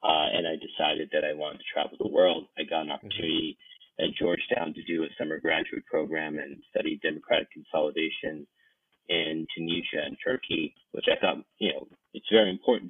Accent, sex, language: American, male, English